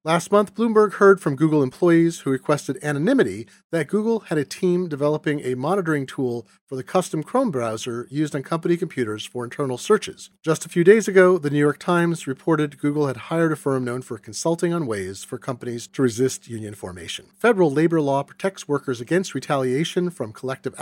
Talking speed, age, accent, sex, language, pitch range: 190 wpm, 40-59, American, male, English, 130-180 Hz